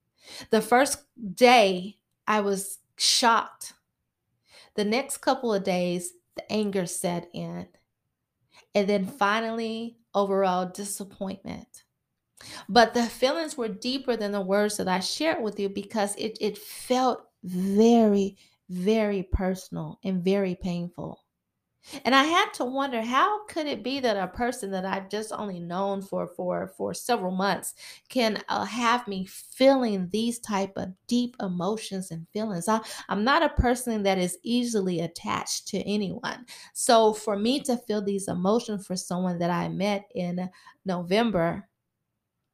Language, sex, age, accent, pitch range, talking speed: English, female, 30-49, American, 185-230 Hz, 140 wpm